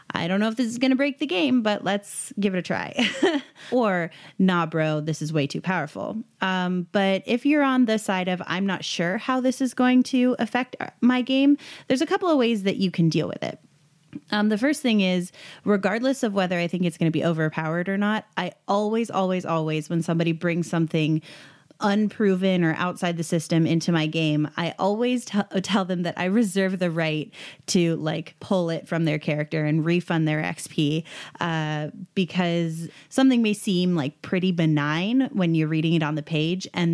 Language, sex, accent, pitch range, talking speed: English, female, American, 160-205 Hz, 200 wpm